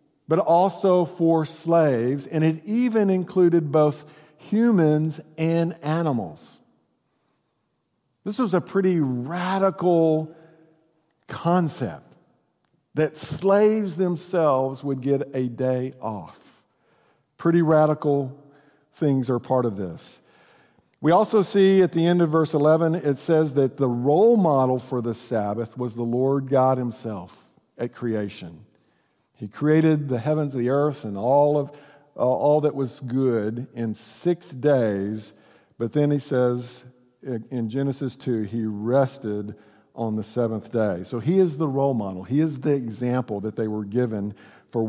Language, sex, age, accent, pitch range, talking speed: English, male, 50-69, American, 120-160 Hz, 140 wpm